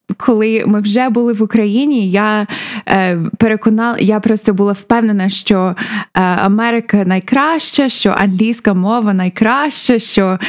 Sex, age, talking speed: female, 20-39, 115 wpm